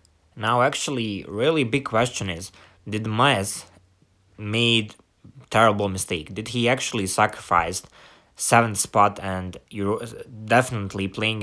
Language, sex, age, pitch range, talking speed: English, male, 20-39, 95-120 Hz, 110 wpm